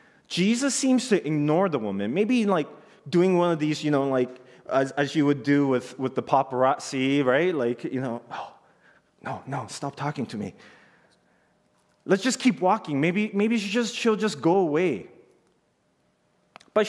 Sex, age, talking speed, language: male, 20-39, 170 wpm, English